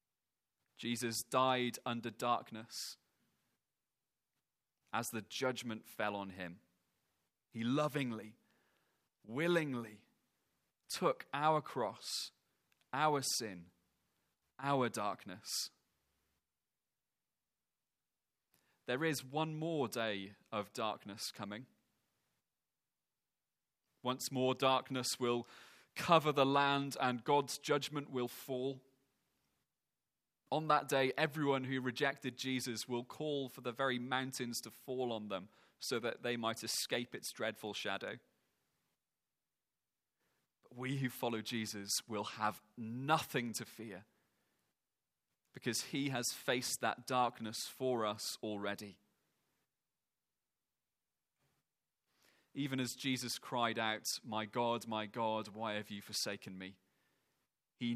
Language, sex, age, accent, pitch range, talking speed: English, male, 30-49, British, 110-135 Hz, 100 wpm